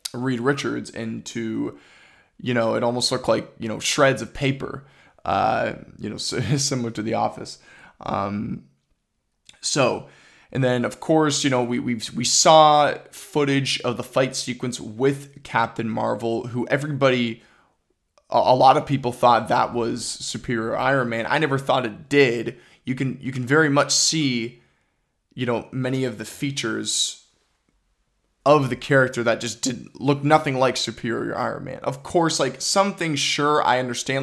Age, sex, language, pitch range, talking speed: 20-39, male, English, 120-145 Hz, 160 wpm